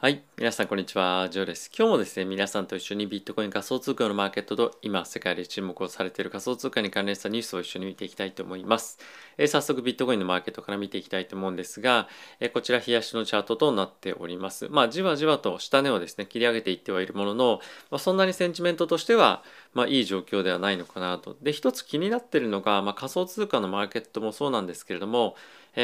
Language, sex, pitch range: Japanese, male, 100-130 Hz